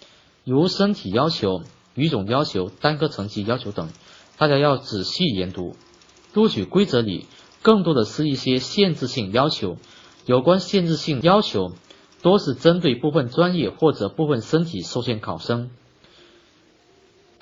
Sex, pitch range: male, 115-165 Hz